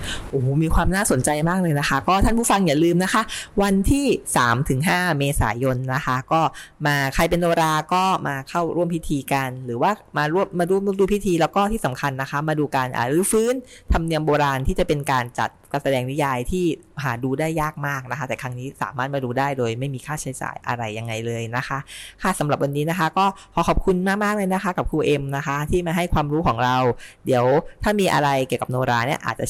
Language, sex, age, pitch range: English, female, 20-39, 130-175 Hz